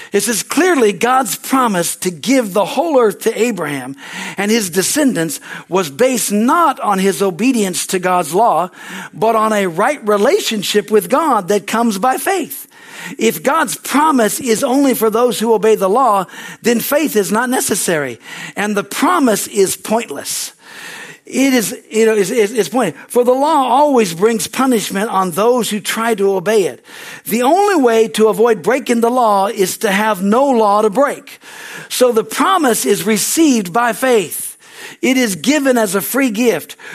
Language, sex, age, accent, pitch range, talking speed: English, male, 60-79, American, 210-260 Hz, 170 wpm